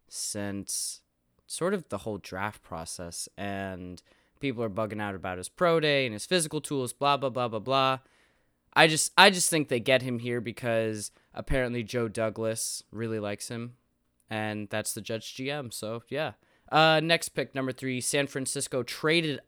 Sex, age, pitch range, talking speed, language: male, 20-39, 105-140 Hz, 170 wpm, English